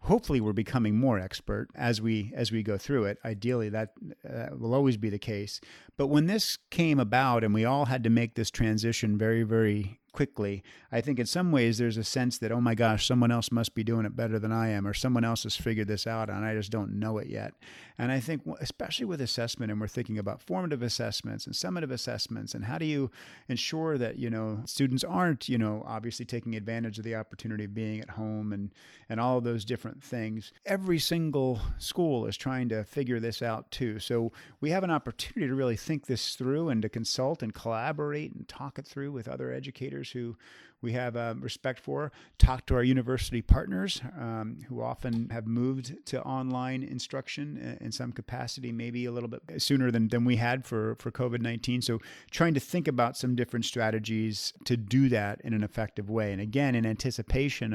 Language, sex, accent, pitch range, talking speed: English, male, American, 110-130 Hz, 210 wpm